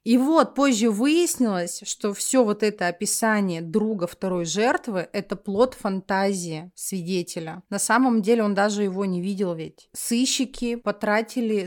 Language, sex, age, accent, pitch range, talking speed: Russian, female, 30-49, native, 175-215 Hz, 140 wpm